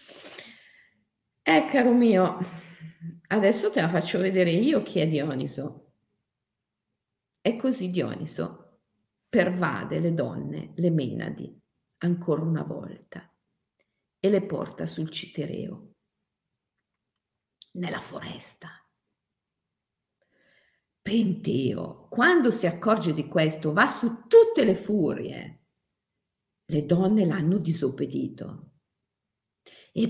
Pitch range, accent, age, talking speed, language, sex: 160-220 Hz, native, 50-69, 90 wpm, Italian, female